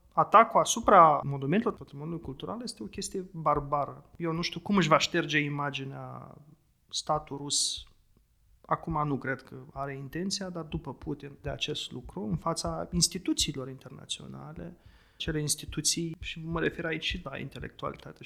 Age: 30-49